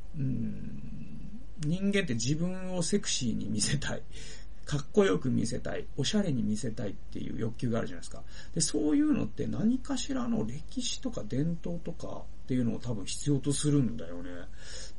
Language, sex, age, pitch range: Japanese, male, 40-59, 110-165 Hz